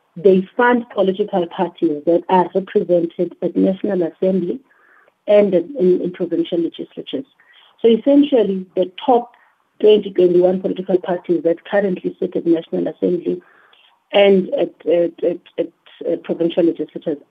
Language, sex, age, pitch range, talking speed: English, female, 50-69, 170-220 Hz, 115 wpm